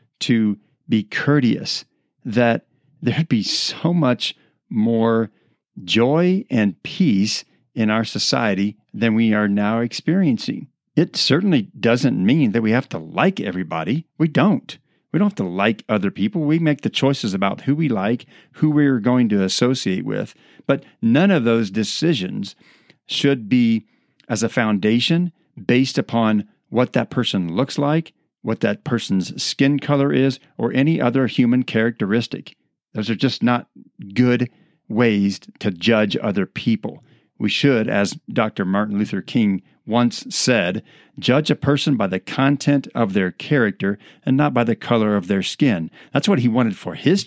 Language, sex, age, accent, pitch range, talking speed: English, male, 50-69, American, 110-150 Hz, 155 wpm